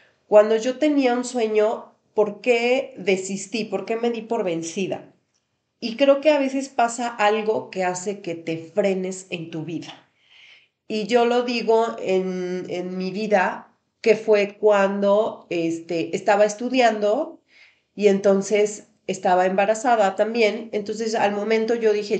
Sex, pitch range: female, 190-230 Hz